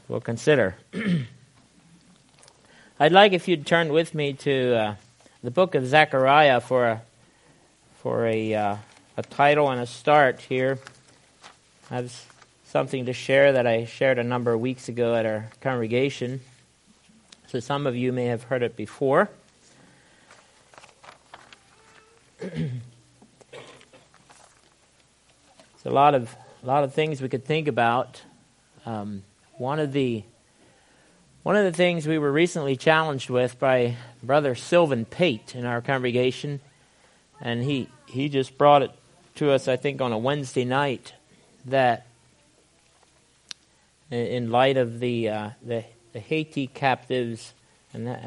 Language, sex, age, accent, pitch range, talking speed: English, male, 50-69, American, 120-140 Hz, 135 wpm